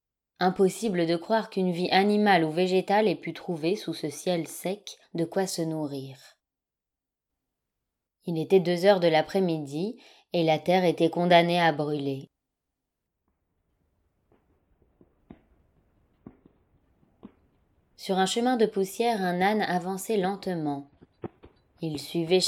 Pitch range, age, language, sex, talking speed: 160-185 Hz, 20-39, French, female, 115 wpm